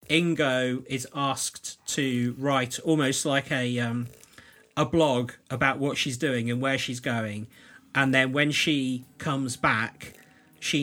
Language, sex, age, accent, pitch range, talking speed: English, male, 40-59, British, 125-150 Hz, 145 wpm